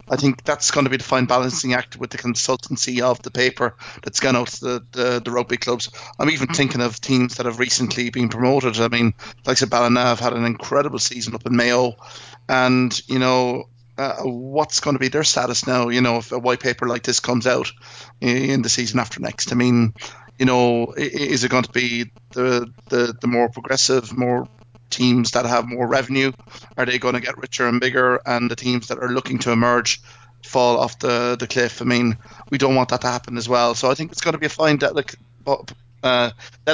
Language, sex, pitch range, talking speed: English, male, 120-125 Hz, 220 wpm